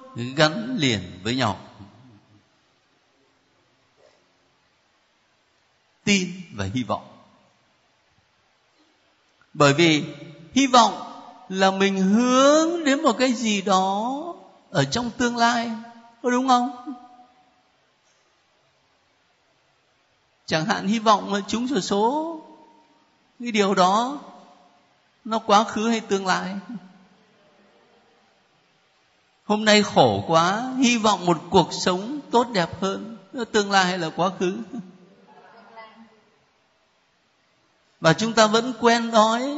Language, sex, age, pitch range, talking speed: Vietnamese, male, 60-79, 175-240 Hz, 105 wpm